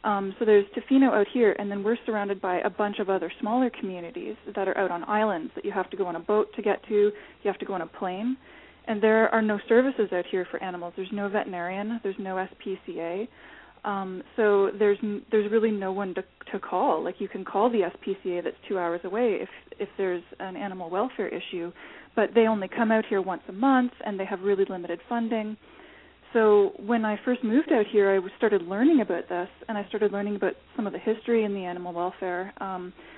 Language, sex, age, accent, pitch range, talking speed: English, female, 20-39, American, 185-215 Hz, 225 wpm